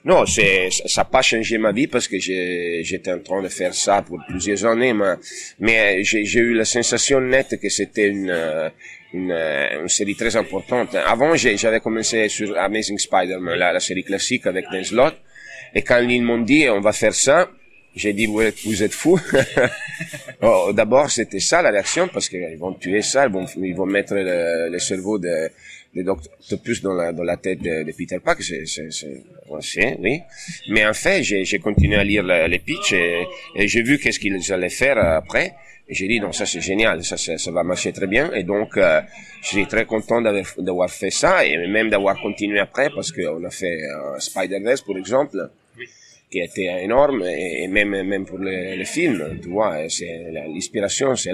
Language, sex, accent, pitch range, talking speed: French, male, Italian, 95-115 Hz, 205 wpm